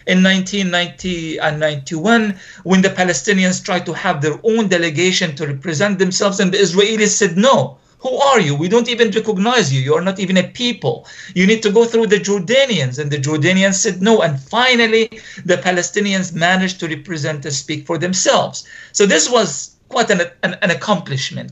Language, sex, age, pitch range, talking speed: English, male, 50-69, 155-205 Hz, 185 wpm